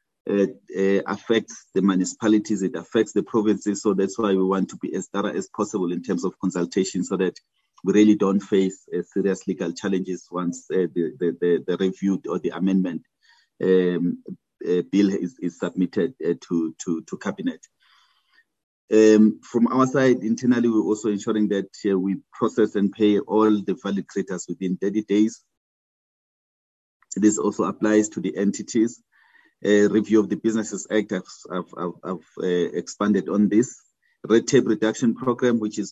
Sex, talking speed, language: male, 170 wpm, English